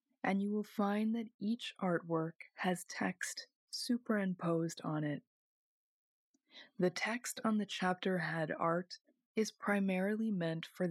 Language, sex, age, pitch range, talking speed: English, female, 20-39, 170-215 Hz, 125 wpm